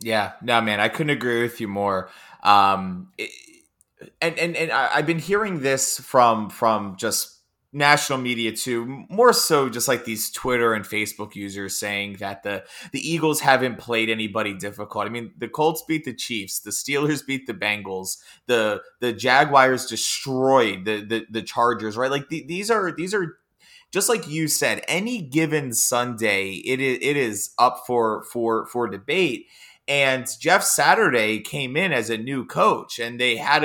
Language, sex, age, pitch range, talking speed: English, male, 20-39, 110-150 Hz, 175 wpm